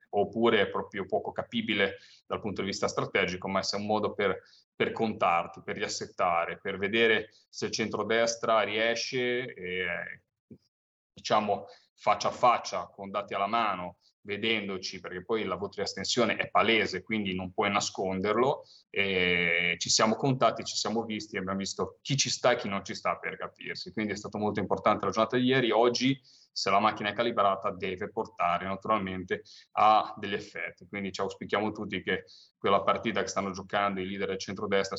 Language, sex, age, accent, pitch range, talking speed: Italian, male, 30-49, native, 100-125 Hz, 175 wpm